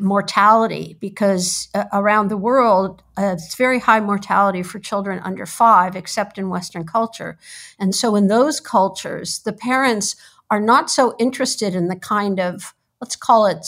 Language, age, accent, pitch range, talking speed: English, 50-69, American, 190-230 Hz, 160 wpm